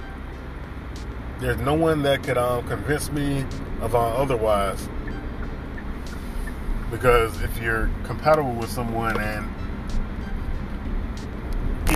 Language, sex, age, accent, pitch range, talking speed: English, male, 20-39, American, 80-115 Hz, 95 wpm